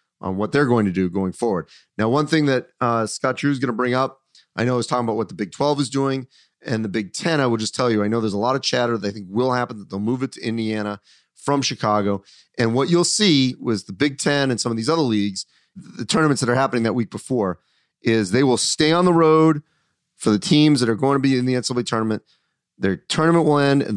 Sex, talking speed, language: male, 270 wpm, English